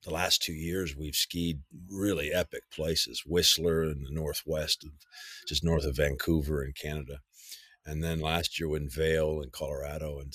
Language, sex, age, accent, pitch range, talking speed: English, male, 50-69, American, 75-90 Hz, 170 wpm